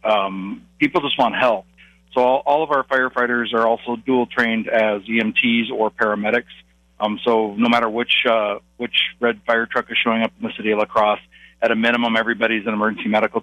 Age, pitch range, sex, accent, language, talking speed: 40-59, 110-120 Hz, male, American, English, 190 wpm